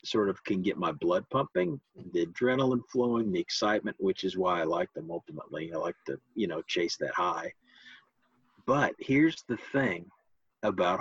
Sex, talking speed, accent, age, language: male, 175 wpm, American, 50-69, English